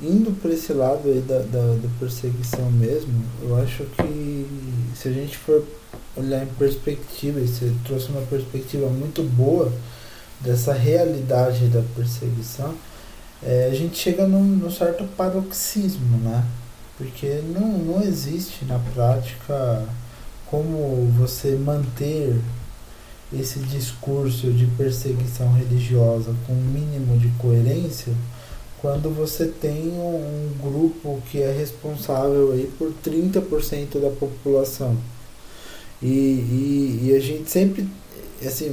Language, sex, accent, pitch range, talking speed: Portuguese, male, Brazilian, 120-150 Hz, 120 wpm